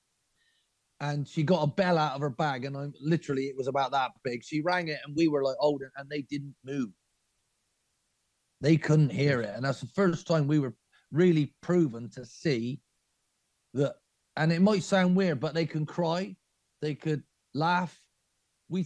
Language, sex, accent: English, male, British